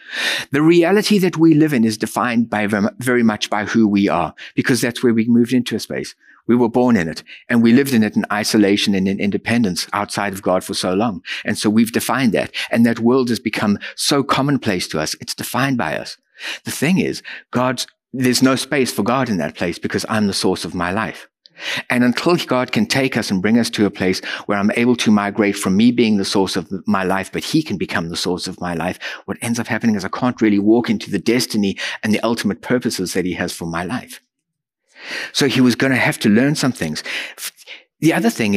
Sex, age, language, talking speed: male, 60-79, English, 235 wpm